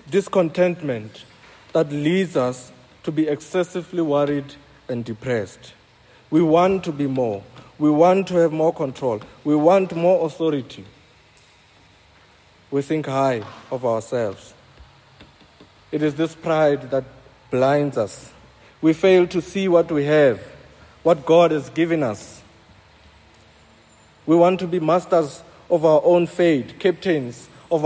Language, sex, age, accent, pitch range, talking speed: English, male, 50-69, South African, 120-165 Hz, 130 wpm